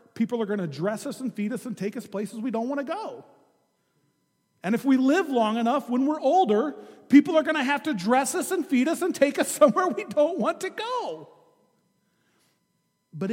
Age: 40-59